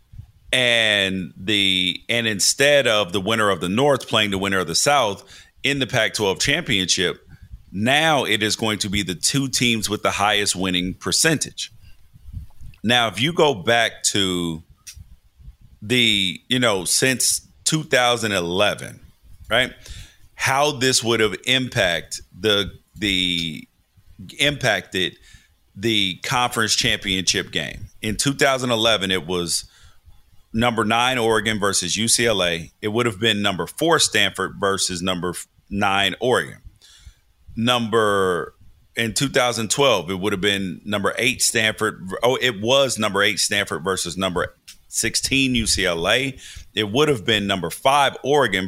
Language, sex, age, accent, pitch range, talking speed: English, male, 40-59, American, 95-120 Hz, 130 wpm